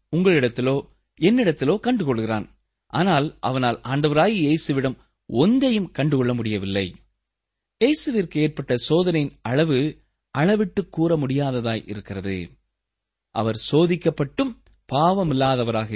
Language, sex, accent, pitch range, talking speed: Tamil, male, native, 120-185 Hz, 75 wpm